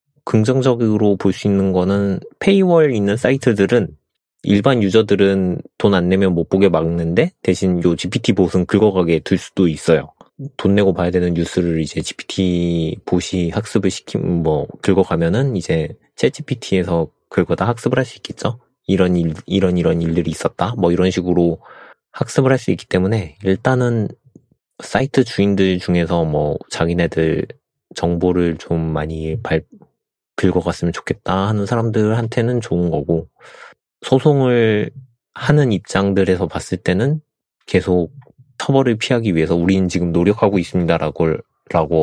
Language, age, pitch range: Korean, 30-49, 85-115 Hz